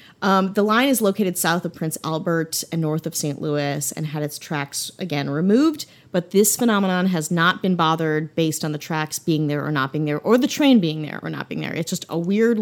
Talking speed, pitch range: 240 wpm, 155-195 Hz